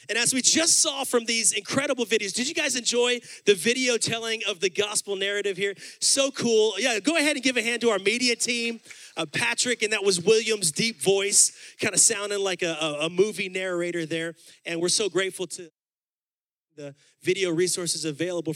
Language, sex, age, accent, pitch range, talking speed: English, male, 30-49, American, 175-250 Hz, 195 wpm